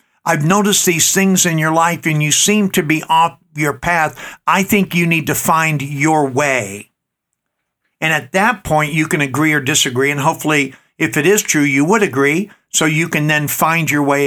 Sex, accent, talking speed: male, American, 200 wpm